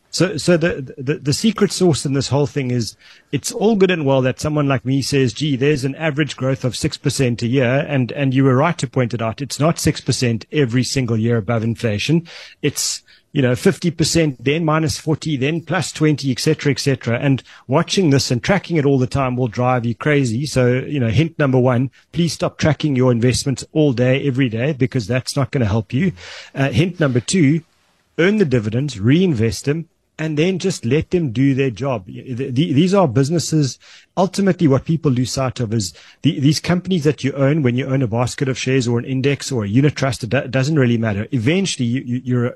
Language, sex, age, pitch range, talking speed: English, male, 30-49, 125-155 Hz, 210 wpm